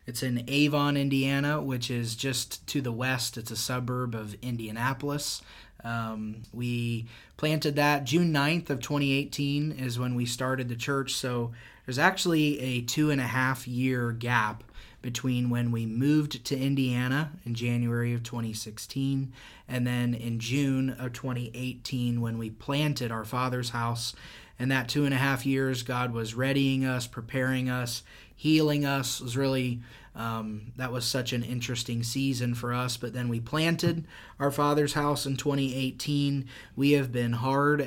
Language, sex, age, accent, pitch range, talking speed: English, male, 20-39, American, 120-140 Hz, 155 wpm